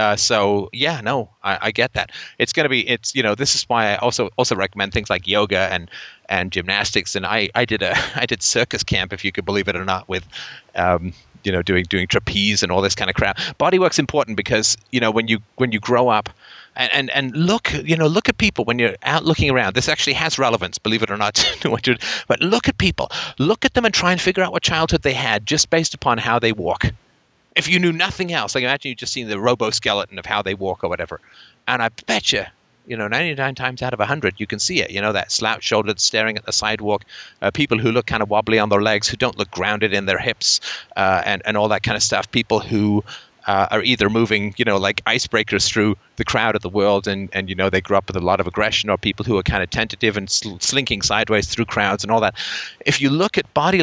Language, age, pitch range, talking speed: English, 30-49, 100-130 Hz, 255 wpm